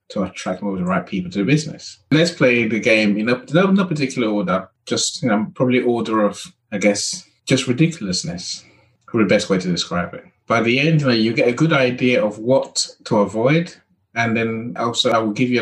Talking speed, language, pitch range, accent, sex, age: 220 wpm, English, 115-160 Hz, British, male, 30-49